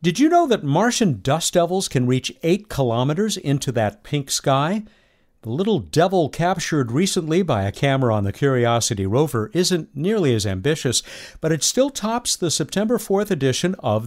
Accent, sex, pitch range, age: American, male, 115-180 Hz, 50-69